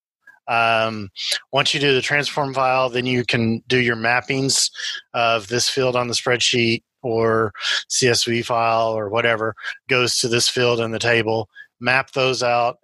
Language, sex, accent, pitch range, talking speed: English, male, American, 115-140 Hz, 160 wpm